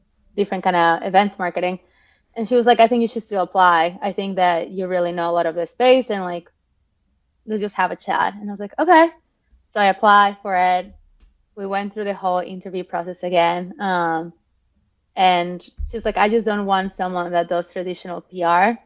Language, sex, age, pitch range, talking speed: English, female, 20-39, 175-205 Hz, 205 wpm